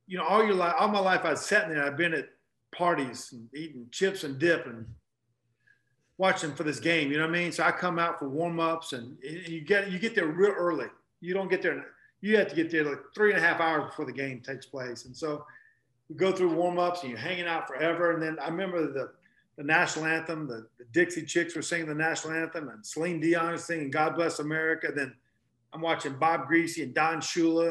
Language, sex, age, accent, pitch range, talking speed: English, male, 40-59, American, 150-175 Hz, 240 wpm